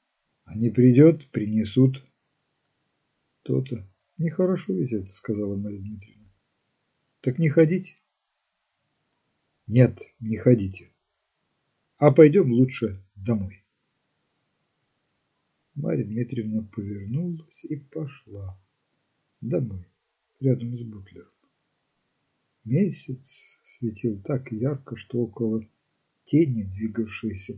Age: 50-69